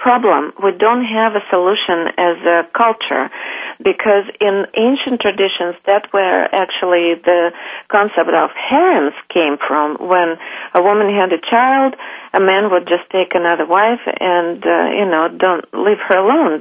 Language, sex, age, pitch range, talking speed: English, female, 40-59, 175-225 Hz, 155 wpm